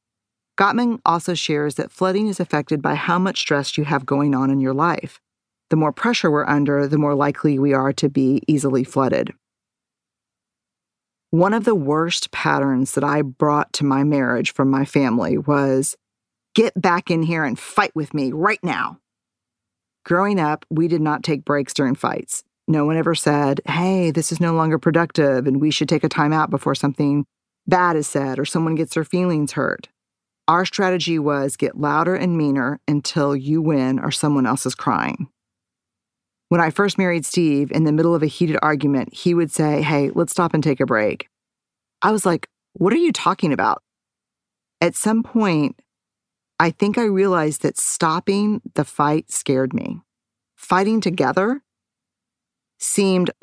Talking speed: 175 wpm